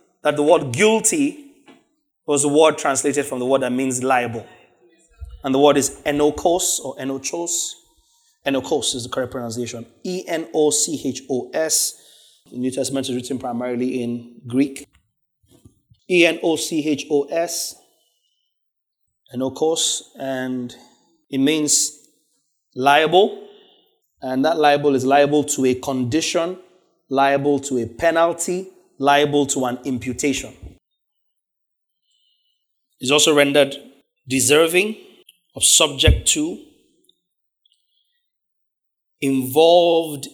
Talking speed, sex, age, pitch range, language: 115 wpm, male, 30-49, 130-180 Hz, English